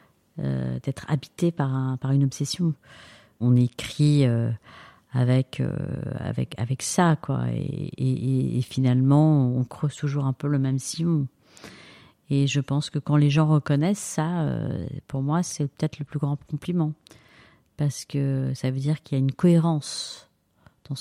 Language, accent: French, French